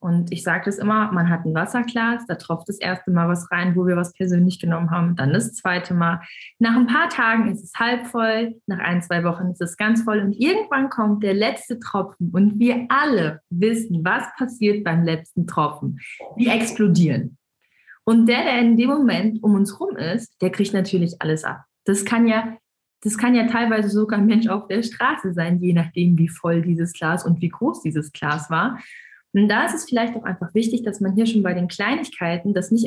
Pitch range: 175-230 Hz